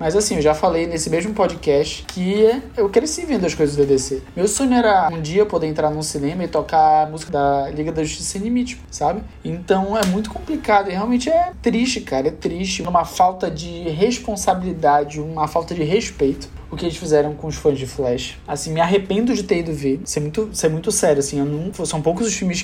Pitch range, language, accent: 145-185 Hz, Portuguese, Brazilian